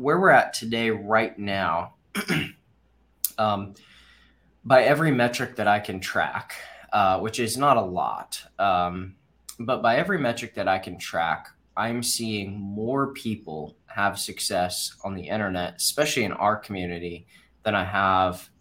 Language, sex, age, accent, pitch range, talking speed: English, male, 20-39, American, 95-120 Hz, 145 wpm